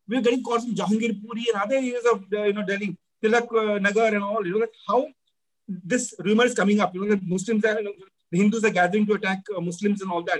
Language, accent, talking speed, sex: English, Indian, 270 wpm, male